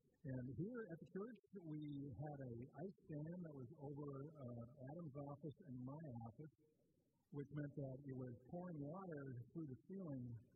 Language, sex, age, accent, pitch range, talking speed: English, male, 50-69, American, 130-200 Hz, 165 wpm